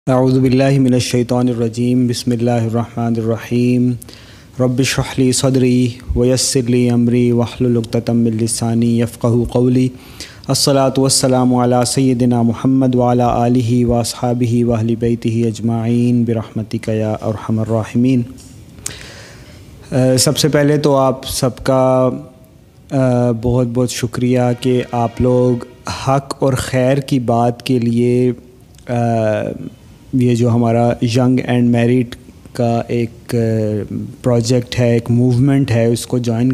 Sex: male